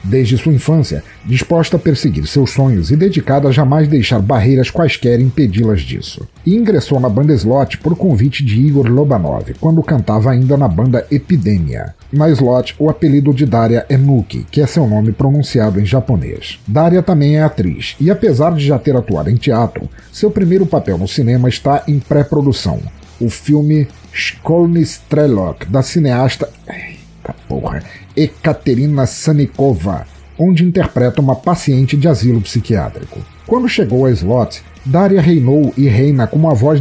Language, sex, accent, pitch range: Portuguese, male, Brazilian, 115-155 Hz